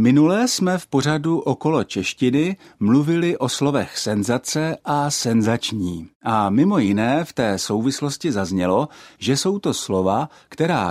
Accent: native